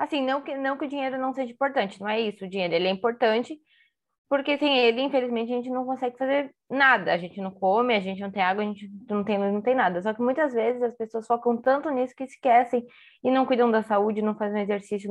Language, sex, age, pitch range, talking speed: Portuguese, female, 20-39, 215-275 Hz, 250 wpm